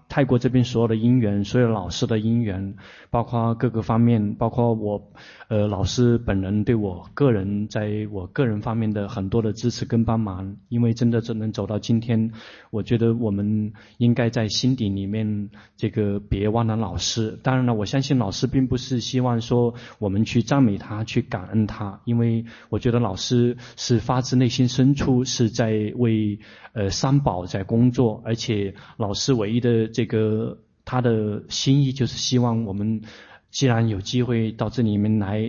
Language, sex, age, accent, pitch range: Chinese, male, 20-39, native, 105-125 Hz